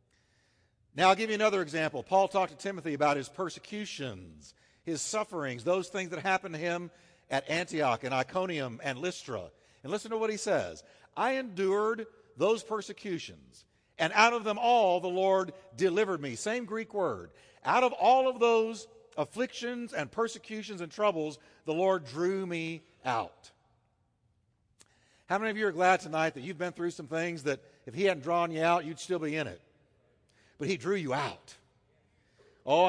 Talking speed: 175 wpm